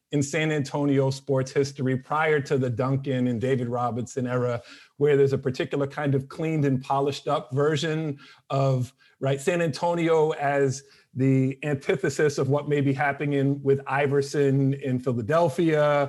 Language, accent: English, American